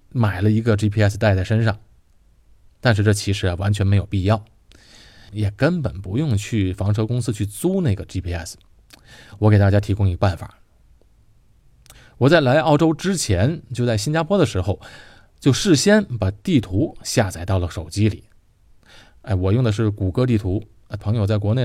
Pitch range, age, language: 95-120 Hz, 20-39, Chinese